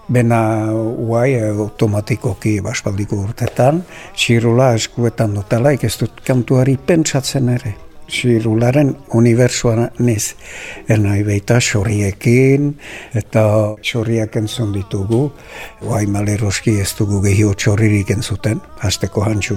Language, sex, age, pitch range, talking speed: French, male, 60-79, 110-130 Hz, 95 wpm